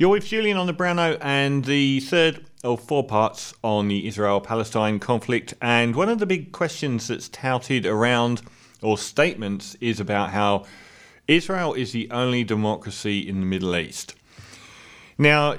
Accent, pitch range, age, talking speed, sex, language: British, 105-140 Hz, 30-49, 160 wpm, male, English